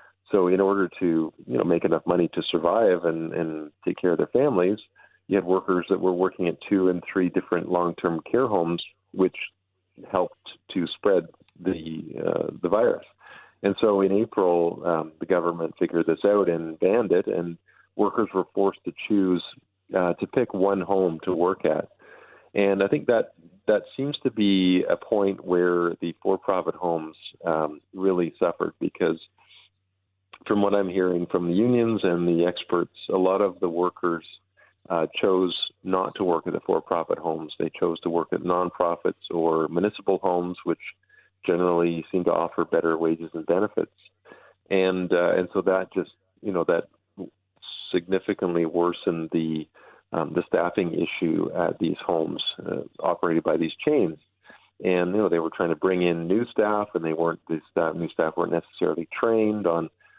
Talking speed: 170 wpm